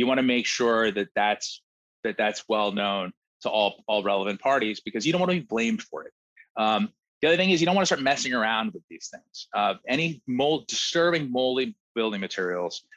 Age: 30-49